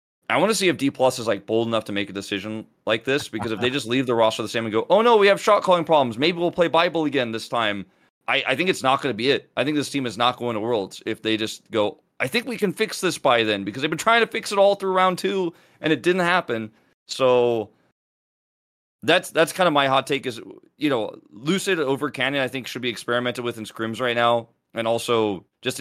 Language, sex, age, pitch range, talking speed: English, male, 30-49, 105-135 Hz, 265 wpm